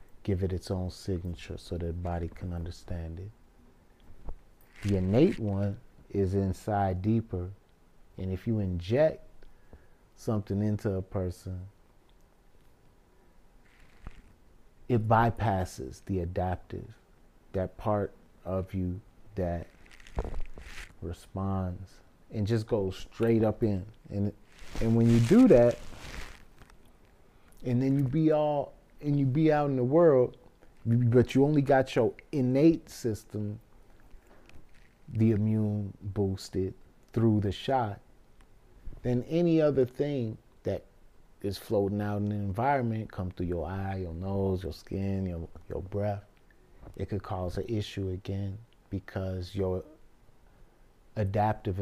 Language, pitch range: English, 95-115 Hz